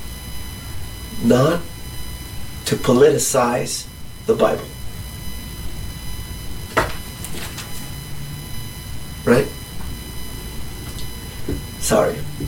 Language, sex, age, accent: English, male, 30-49, American